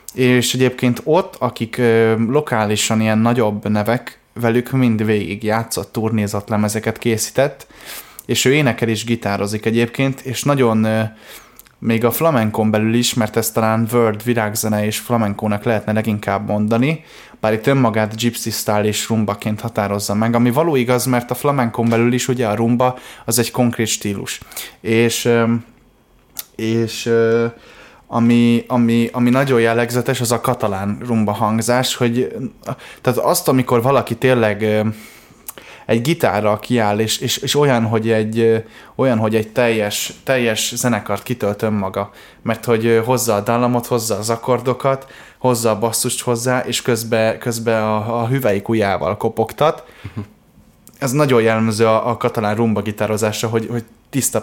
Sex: male